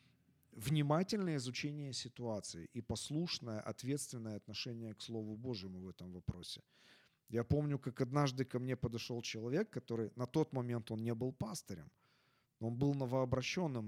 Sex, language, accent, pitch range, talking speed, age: male, Ukrainian, native, 115-145 Hz, 135 wpm, 40-59